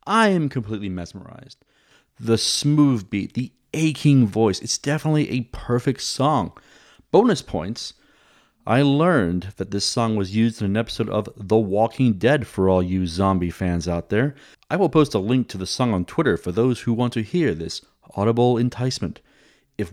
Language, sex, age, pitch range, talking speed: English, male, 30-49, 95-140 Hz, 175 wpm